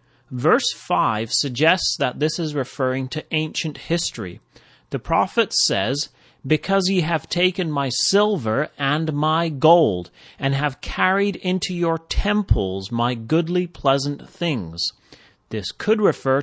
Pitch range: 120-160 Hz